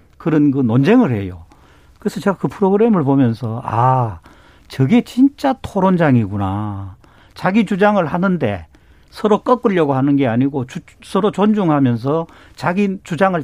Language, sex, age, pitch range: Korean, male, 50-69, 125-175 Hz